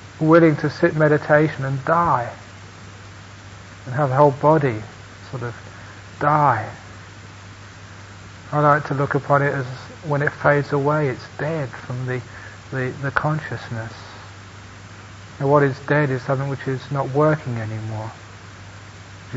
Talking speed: 135 wpm